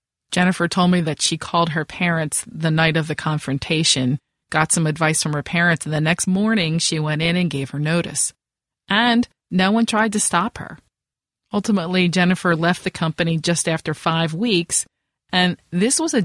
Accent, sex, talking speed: American, female, 185 wpm